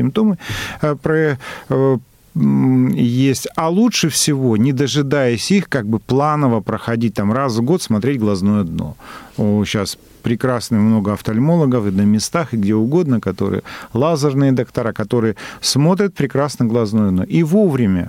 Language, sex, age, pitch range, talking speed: Russian, male, 40-59, 115-165 Hz, 145 wpm